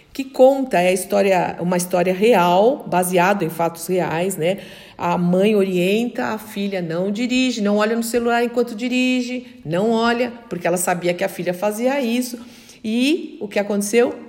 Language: Portuguese